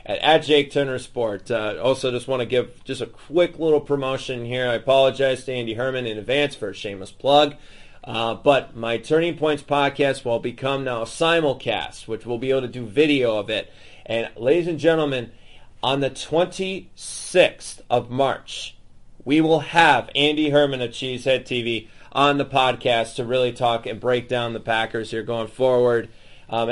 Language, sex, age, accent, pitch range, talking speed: English, male, 30-49, American, 120-150 Hz, 175 wpm